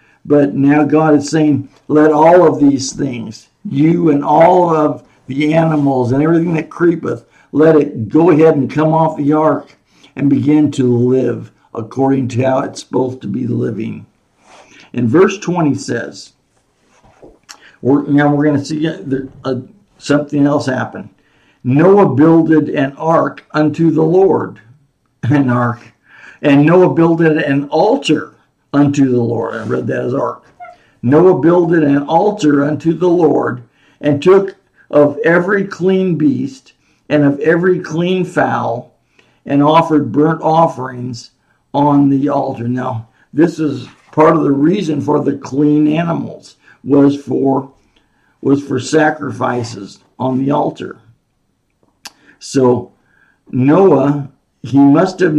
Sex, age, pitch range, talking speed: male, 60-79, 135-160 Hz, 135 wpm